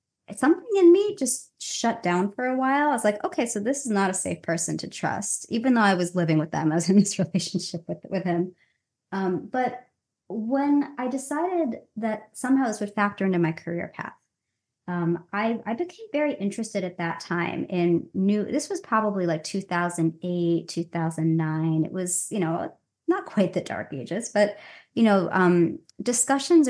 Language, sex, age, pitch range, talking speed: English, male, 30-49, 175-245 Hz, 195 wpm